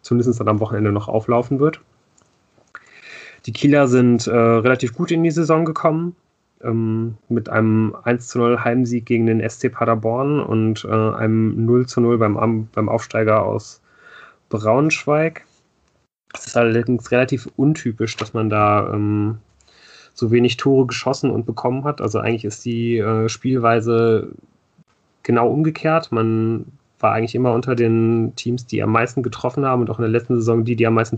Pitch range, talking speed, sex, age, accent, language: 115-135 Hz, 155 wpm, male, 30-49, German, German